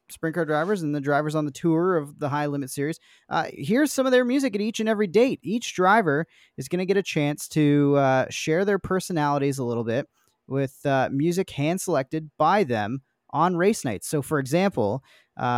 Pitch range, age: 125-165 Hz, 20-39